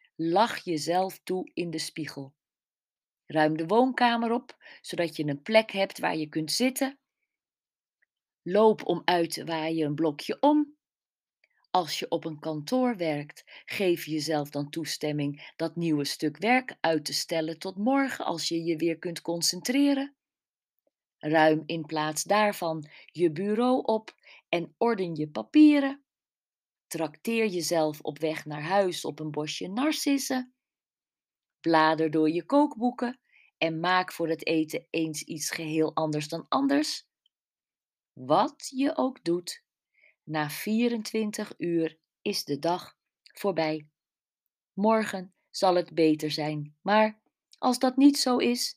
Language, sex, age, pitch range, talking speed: Dutch, female, 40-59, 160-235 Hz, 135 wpm